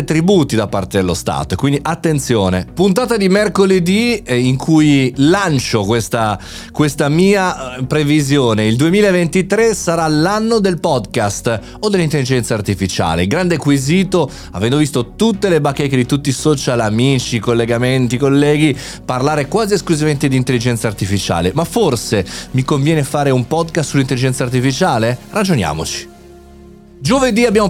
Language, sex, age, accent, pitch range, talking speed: Italian, male, 30-49, native, 120-175 Hz, 125 wpm